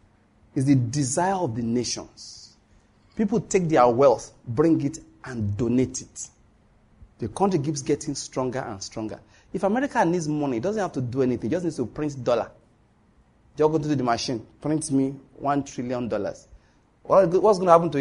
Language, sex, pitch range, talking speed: English, male, 115-170 Hz, 180 wpm